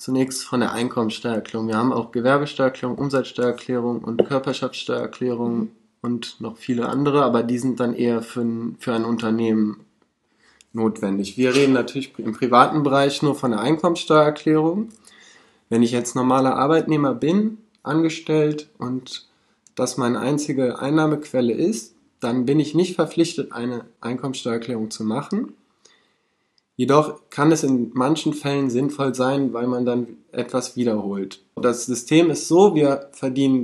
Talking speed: 135 wpm